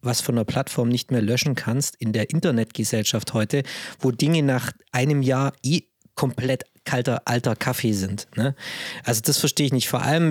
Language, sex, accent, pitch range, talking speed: German, male, German, 125-160 Hz, 175 wpm